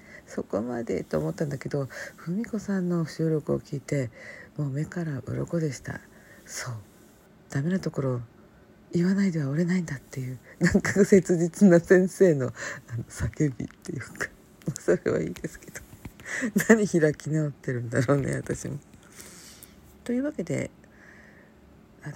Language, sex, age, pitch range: Japanese, female, 50-69, 120-180 Hz